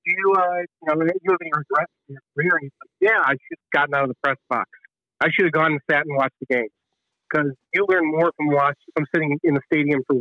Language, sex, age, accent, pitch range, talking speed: English, male, 50-69, American, 140-175 Hz, 270 wpm